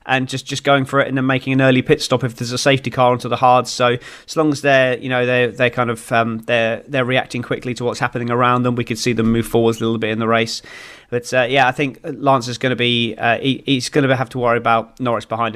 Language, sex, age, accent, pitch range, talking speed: English, male, 30-49, British, 115-130 Hz, 290 wpm